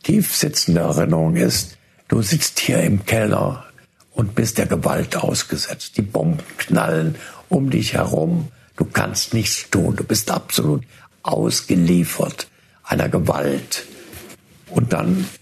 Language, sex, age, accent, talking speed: German, male, 60-79, German, 120 wpm